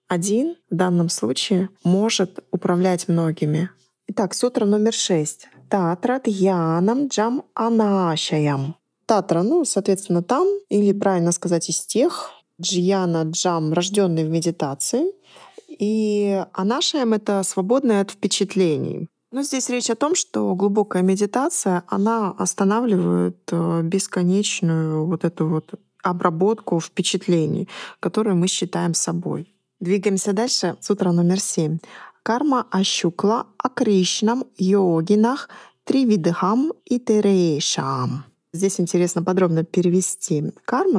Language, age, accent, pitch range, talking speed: Russian, 20-39, native, 175-220 Hz, 105 wpm